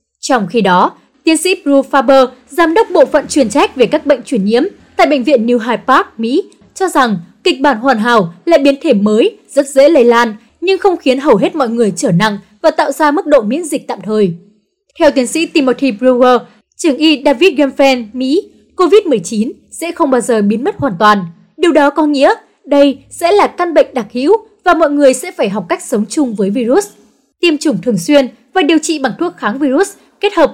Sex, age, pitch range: female, 20-39, 230-320 Hz